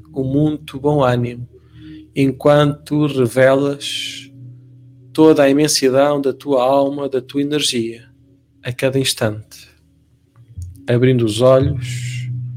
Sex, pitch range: male, 120-135 Hz